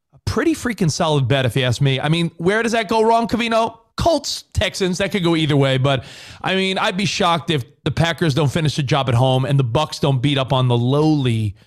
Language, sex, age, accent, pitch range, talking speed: English, male, 30-49, American, 140-190 Hz, 240 wpm